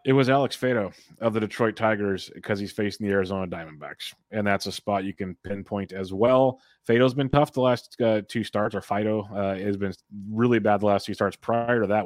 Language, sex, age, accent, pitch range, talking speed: English, male, 30-49, American, 95-110 Hz, 225 wpm